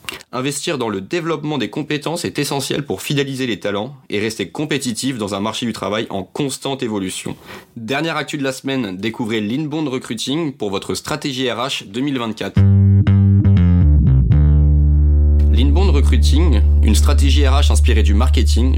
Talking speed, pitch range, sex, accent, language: 140 wpm, 95-140 Hz, male, French, French